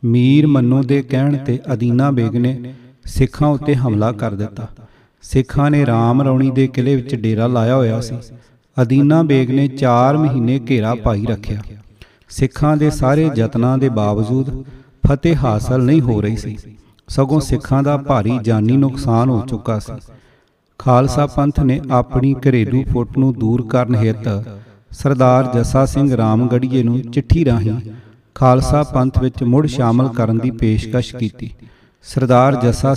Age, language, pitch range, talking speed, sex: 40-59, Punjabi, 115-135 Hz, 150 wpm, male